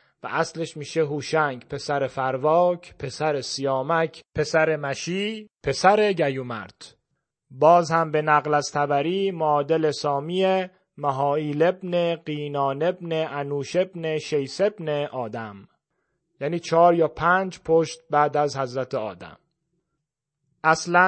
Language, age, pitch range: Persian, 30-49, 145-170 Hz